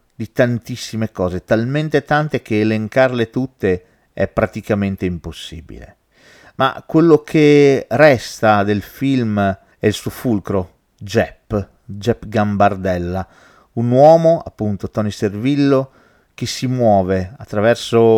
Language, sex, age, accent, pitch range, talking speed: Italian, male, 40-59, native, 105-135 Hz, 105 wpm